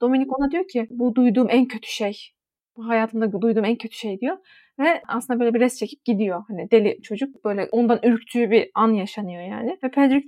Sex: female